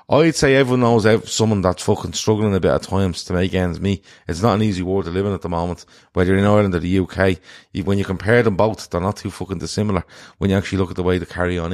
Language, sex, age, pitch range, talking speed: English, male, 30-49, 90-110 Hz, 270 wpm